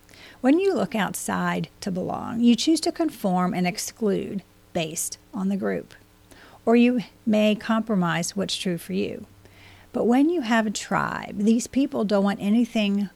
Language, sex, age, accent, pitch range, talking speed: English, female, 40-59, American, 180-220 Hz, 160 wpm